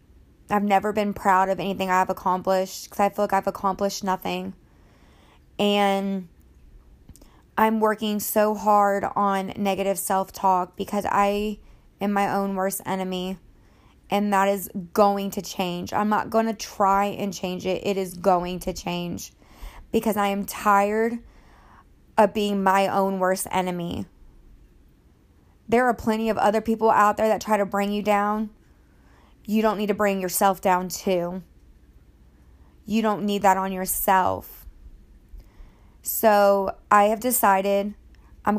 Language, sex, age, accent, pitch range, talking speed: English, female, 20-39, American, 190-210 Hz, 145 wpm